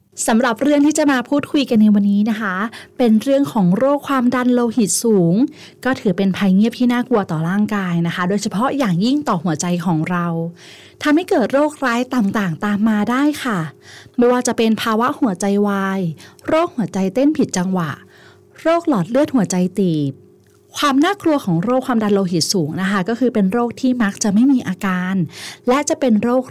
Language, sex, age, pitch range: Thai, female, 20-39, 185-255 Hz